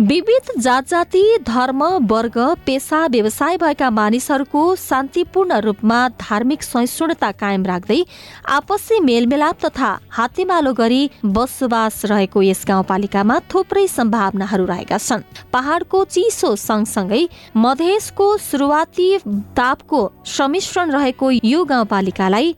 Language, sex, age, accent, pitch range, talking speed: English, female, 20-39, Indian, 220-325 Hz, 110 wpm